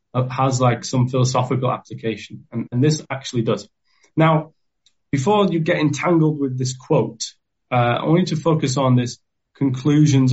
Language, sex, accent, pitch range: English, male, British, 120-145 Hz